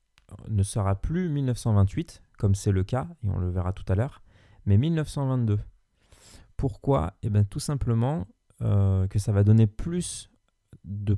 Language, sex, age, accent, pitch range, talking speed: French, male, 20-39, French, 100-120 Hz, 155 wpm